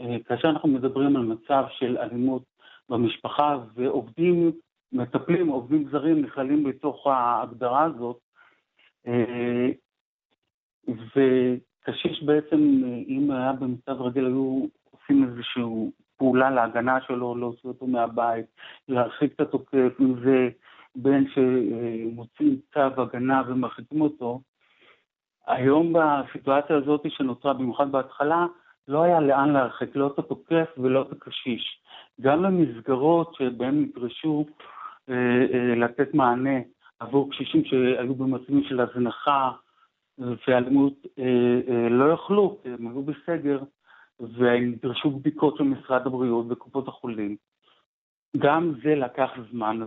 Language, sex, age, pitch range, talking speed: Hebrew, male, 50-69, 120-145 Hz, 110 wpm